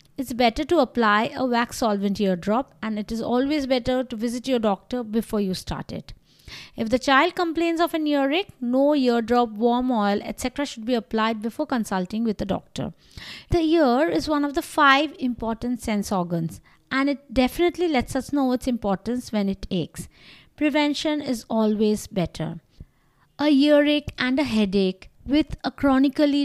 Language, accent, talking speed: English, Indian, 170 wpm